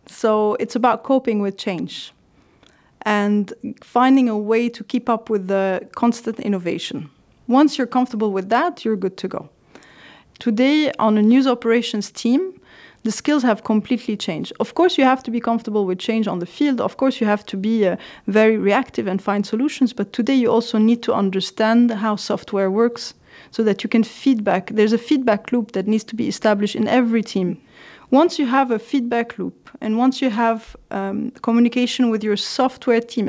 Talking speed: 185 wpm